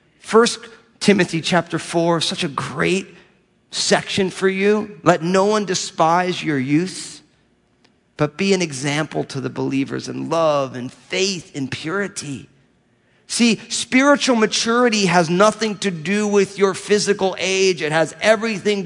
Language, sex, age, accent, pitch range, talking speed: English, male, 40-59, American, 160-200 Hz, 135 wpm